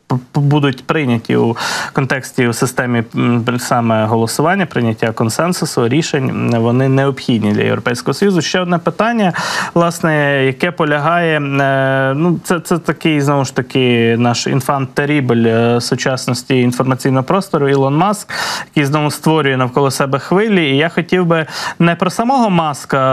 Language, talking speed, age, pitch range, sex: Ukrainian, 130 wpm, 20-39, 125-165 Hz, male